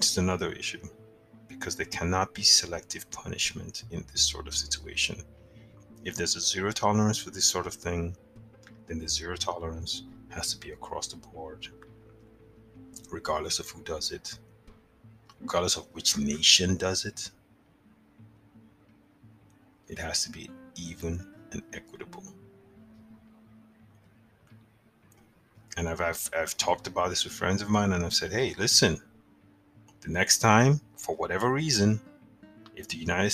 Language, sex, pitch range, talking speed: English, male, 100-115 Hz, 140 wpm